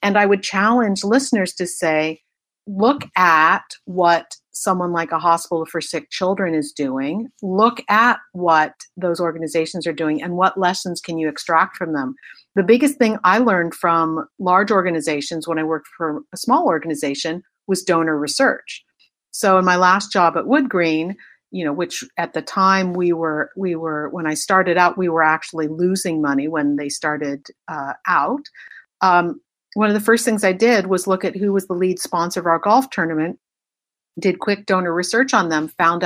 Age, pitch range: 50-69, 165-200 Hz